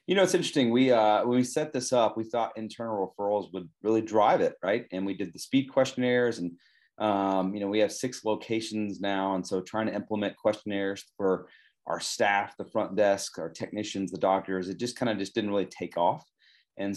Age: 30-49